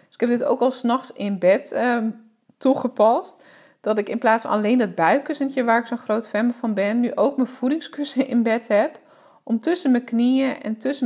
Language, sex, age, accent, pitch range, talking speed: English, female, 20-39, Dutch, 215-265 Hz, 205 wpm